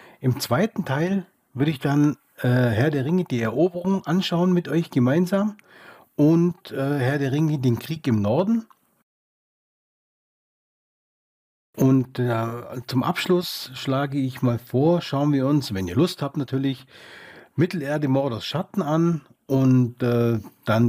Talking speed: 140 wpm